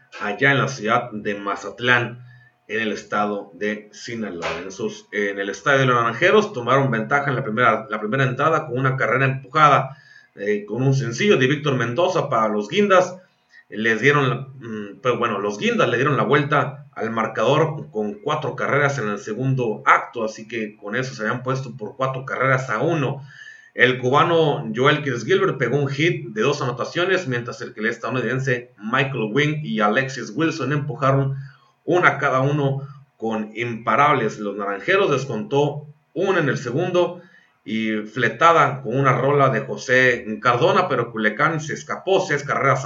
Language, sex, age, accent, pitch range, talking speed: Spanish, male, 30-49, Mexican, 110-145 Hz, 165 wpm